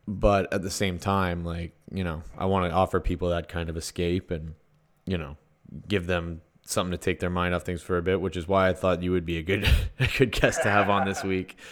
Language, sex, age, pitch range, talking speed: English, male, 20-39, 85-100 Hz, 250 wpm